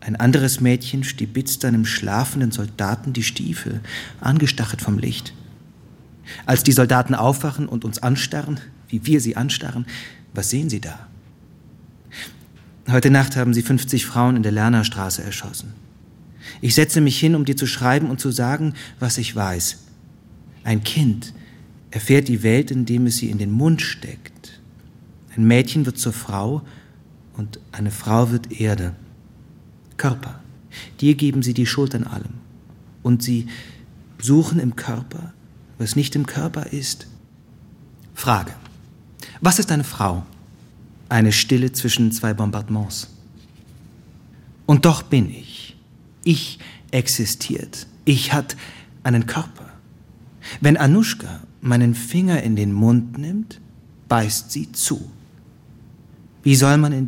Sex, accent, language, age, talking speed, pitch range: male, German, German, 40-59, 130 wpm, 115-140 Hz